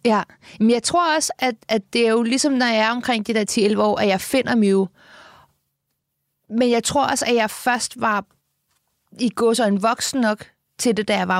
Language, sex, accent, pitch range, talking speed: Danish, female, native, 205-240 Hz, 210 wpm